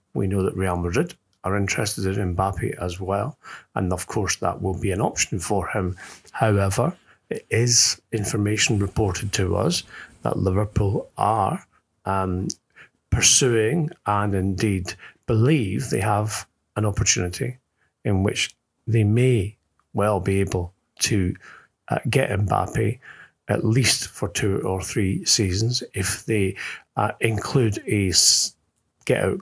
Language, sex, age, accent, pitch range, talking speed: English, male, 40-59, British, 95-115 Hz, 130 wpm